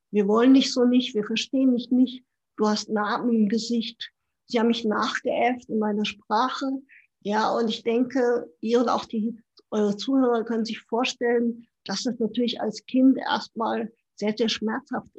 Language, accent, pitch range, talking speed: German, German, 220-255 Hz, 170 wpm